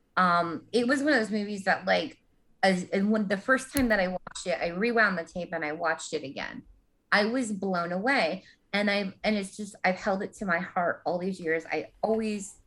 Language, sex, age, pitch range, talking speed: English, female, 20-39, 175-230 Hz, 225 wpm